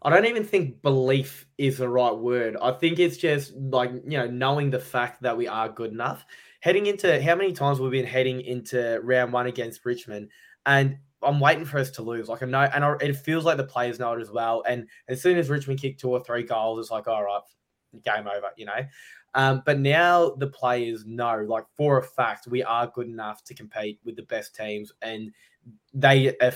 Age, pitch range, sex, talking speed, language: 20-39, 115-135 Hz, male, 220 wpm, English